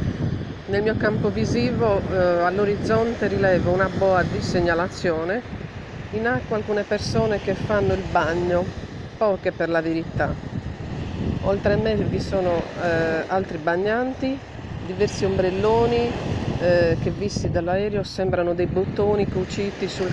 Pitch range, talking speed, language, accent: 175-205 Hz, 125 wpm, Italian, native